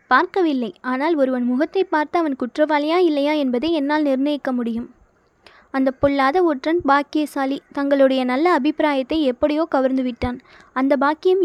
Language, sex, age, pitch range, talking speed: Tamil, female, 20-39, 265-320 Hz, 120 wpm